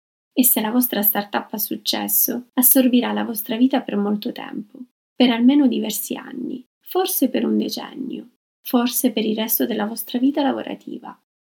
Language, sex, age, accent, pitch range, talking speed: Italian, female, 20-39, native, 225-270 Hz, 155 wpm